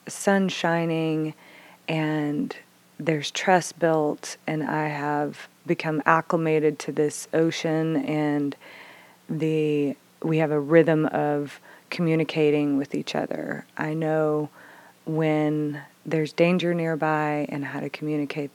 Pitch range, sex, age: 145-165 Hz, female, 30-49